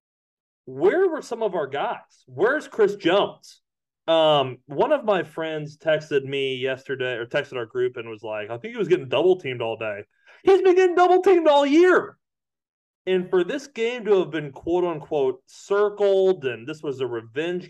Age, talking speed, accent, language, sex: 30-49, 185 wpm, American, English, male